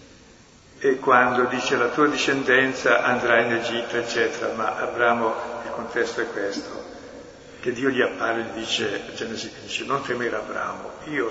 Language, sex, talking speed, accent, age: Italian, male, 155 wpm, native, 60-79